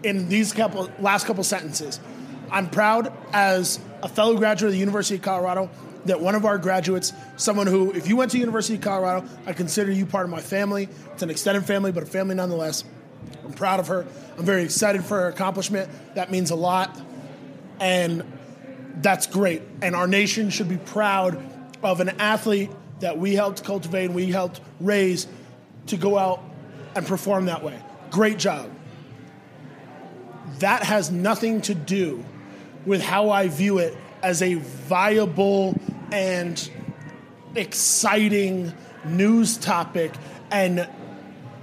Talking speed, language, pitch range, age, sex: 155 wpm, English, 175-205 Hz, 20-39, male